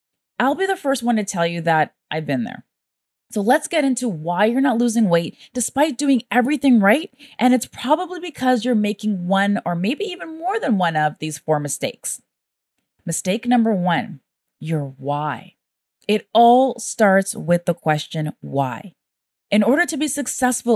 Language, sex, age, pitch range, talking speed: English, female, 20-39, 190-255 Hz, 170 wpm